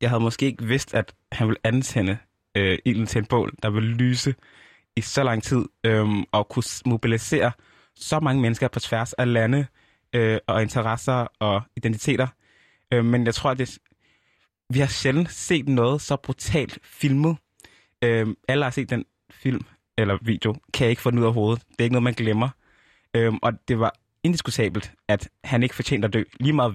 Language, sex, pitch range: Danish, male, 110-130 Hz